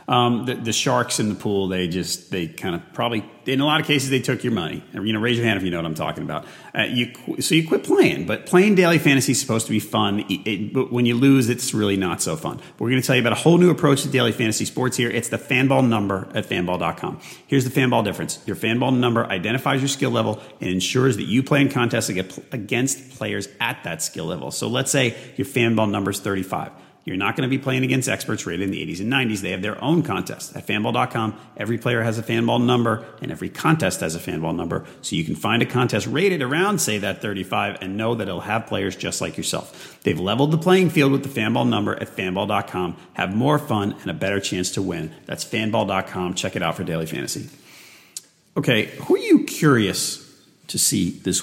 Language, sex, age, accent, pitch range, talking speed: English, male, 40-59, American, 100-130 Hz, 235 wpm